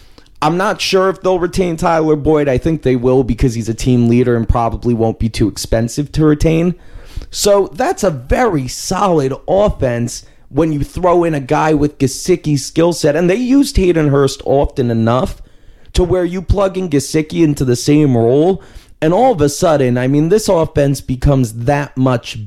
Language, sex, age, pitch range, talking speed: English, male, 30-49, 120-160 Hz, 185 wpm